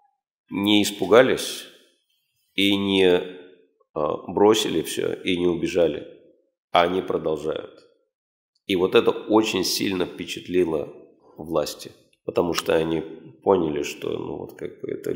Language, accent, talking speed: Russian, native, 105 wpm